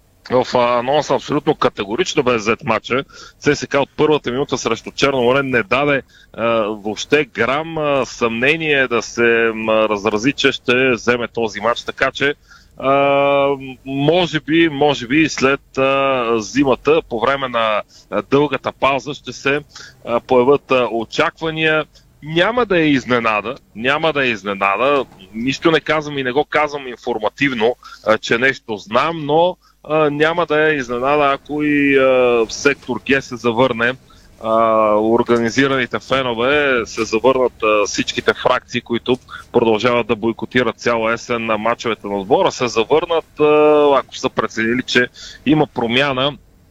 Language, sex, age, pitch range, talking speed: Bulgarian, male, 30-49, 115-145 Hz, 135 wpm